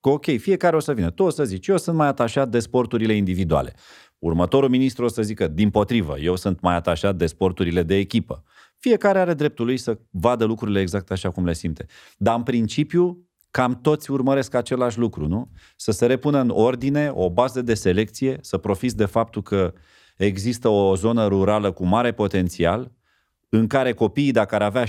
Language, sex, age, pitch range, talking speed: Romanian, male, 30-49, 95-130 Hz, 195 wpm